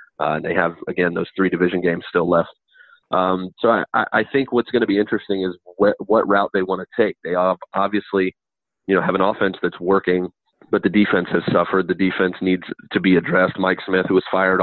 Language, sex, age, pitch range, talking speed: English, male, 30-49, 90-100 Hz, 220 wpm